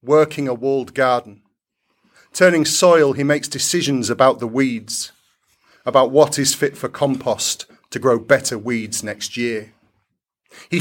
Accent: British